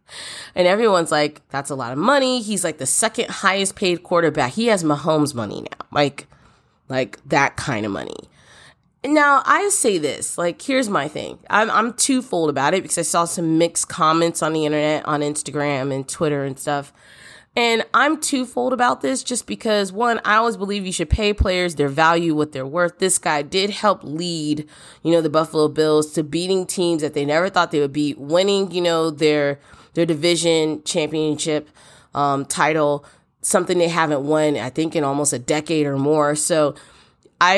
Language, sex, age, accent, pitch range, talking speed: English, female, 20-39, American, 150-185 Hz, 185 wpm